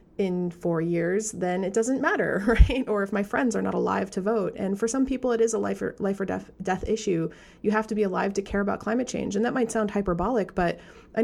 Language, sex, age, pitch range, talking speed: English, female, 30-49, 185-225 Hz, 255 wpm